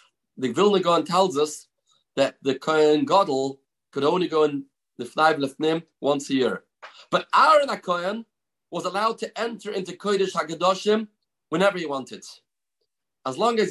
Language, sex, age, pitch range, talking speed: English, male, 40-59, 165-205 Hz, 150 wpm